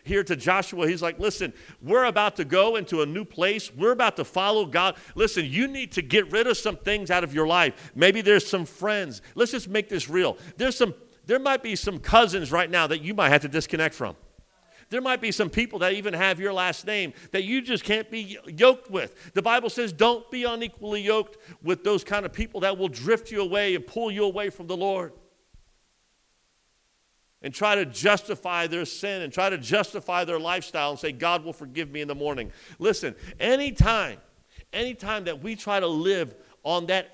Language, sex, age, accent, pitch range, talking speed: English, male, 50-69, American, 155-210 Hz, 215 wpm